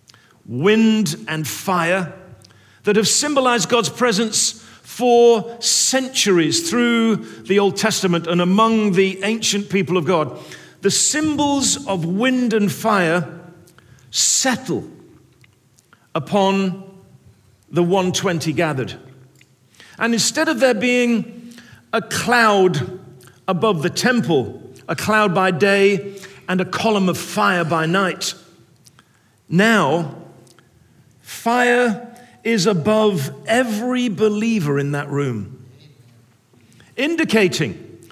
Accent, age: British, 50-69